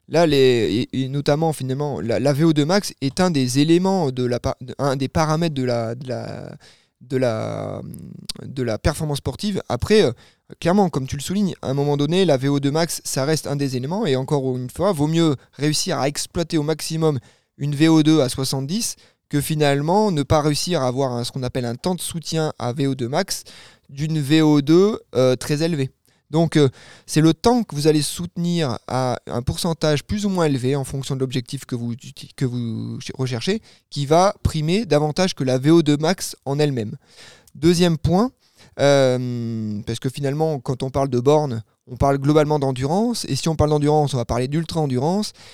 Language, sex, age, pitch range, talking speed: French, male, 20-39, 130-165 Hz, 190 wpm